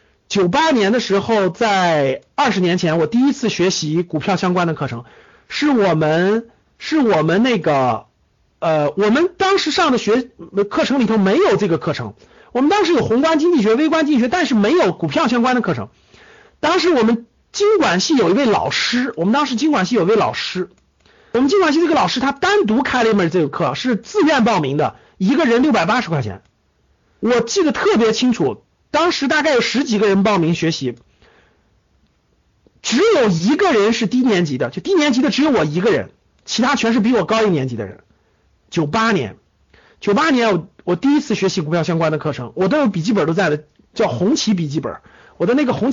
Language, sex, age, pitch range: Chinese, male, 50-69, 165-255 Hz